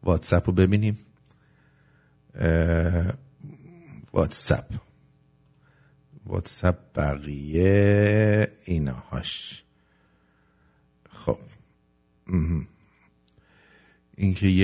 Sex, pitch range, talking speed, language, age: male, 85-110 Hz, 50 wpm, English, 50-69